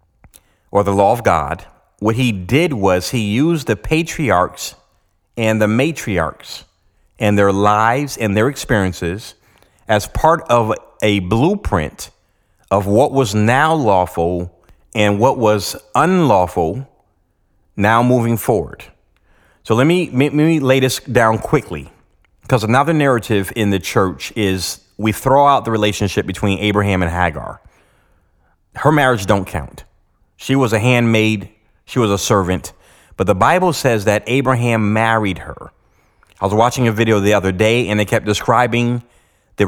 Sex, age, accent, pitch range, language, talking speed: male, 30-49, American, 95-120 Hz, English, 145 wpm